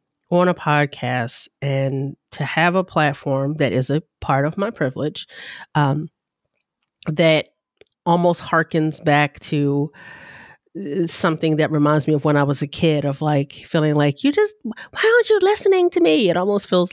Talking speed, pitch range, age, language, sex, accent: 165 wpm, 150-195 Hz, 30-49, English, female, American